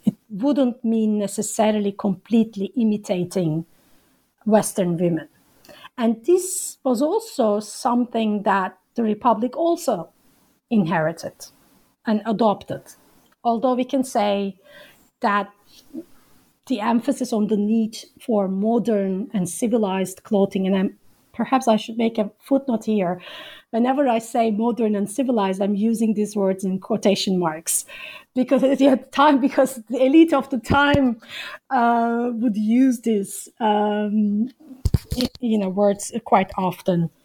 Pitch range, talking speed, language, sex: 200-250 Hz, 120 wpm, English, female